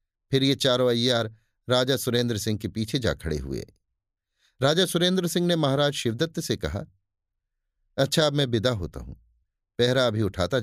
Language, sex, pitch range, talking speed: Hindi, male, 95-135 Hz, 145 wpm